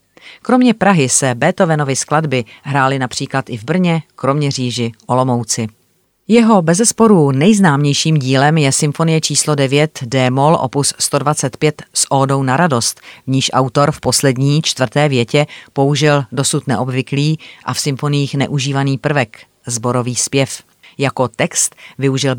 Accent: native